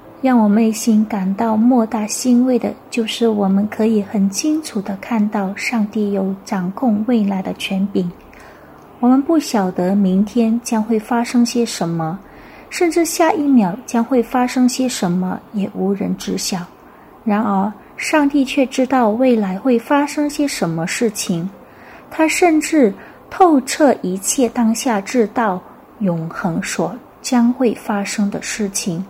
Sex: female